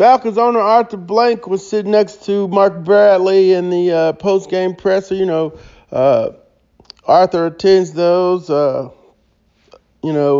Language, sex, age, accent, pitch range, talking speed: English, male, 40-59, American, 160-195 Hz, 145 wpm